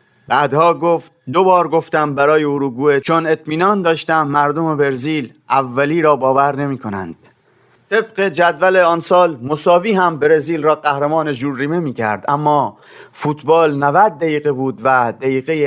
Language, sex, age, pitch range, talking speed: Persian, male, 30-49, 140-160 Hz, 135 wpm